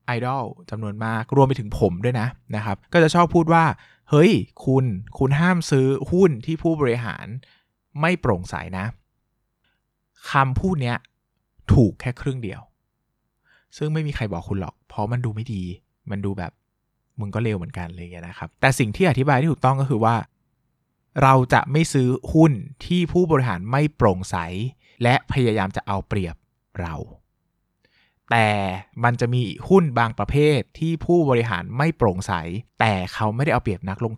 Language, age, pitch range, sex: Thai, 20-39, 105-135 Hz, male